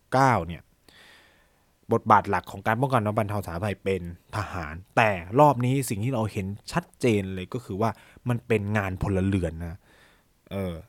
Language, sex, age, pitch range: Thai, male, 20-39, 105-140 Hz